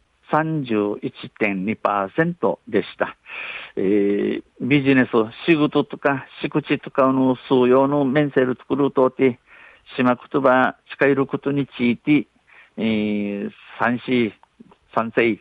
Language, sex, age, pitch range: Japanese, male, 50-69, 110-135 Hz